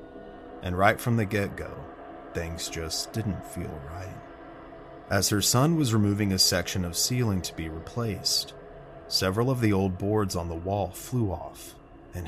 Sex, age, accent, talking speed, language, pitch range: male, 30-49, American, 165 wpm, English, 85-110 Hz